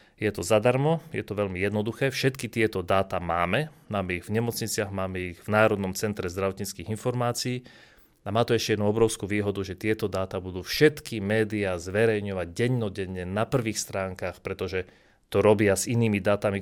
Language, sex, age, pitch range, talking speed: Slovak, male, 30-49, 100-125 Hz, 165 wpm